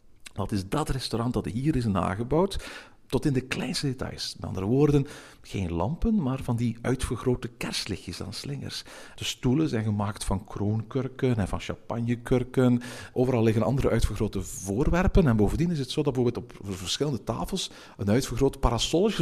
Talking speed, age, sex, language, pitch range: 160 wpm, 50-69, male, Dutch, 100-135 Hz